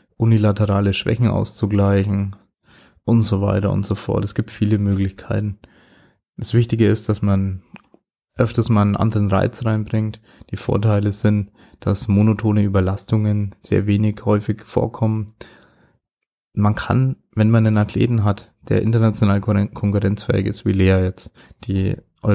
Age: 20-39